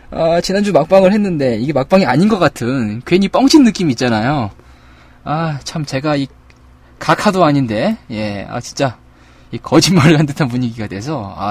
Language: Korean